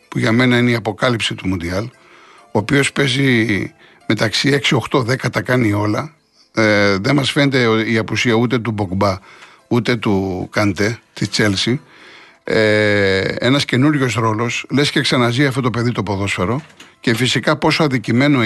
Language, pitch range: Greek, 110-135 Hz